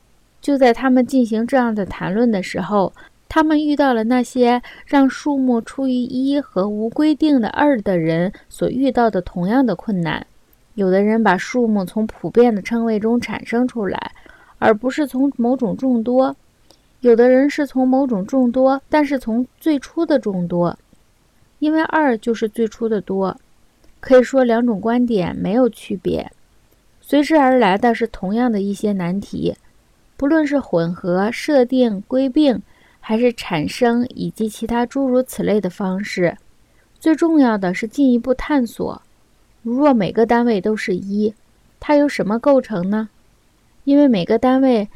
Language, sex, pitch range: Chinese, female, 210-265 Hz